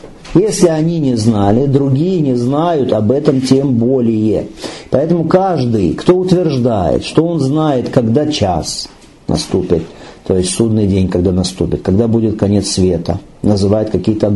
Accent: native